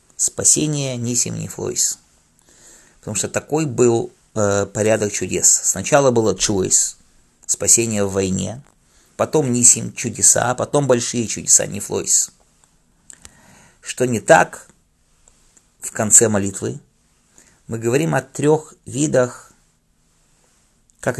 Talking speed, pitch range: 100 wpm, 105-130 Hz